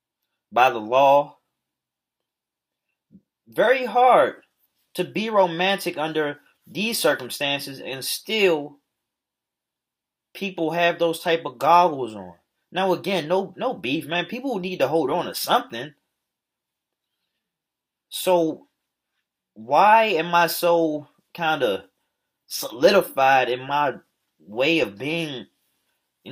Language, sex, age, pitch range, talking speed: English, male, 20-39, 145-185 Hz, 105 wpm